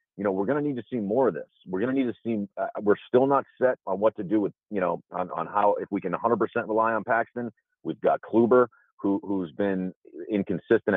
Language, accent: English, American